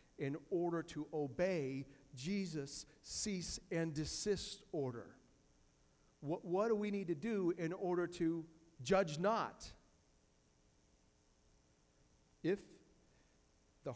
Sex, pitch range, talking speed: male, 110-155 Hz, 90 wpm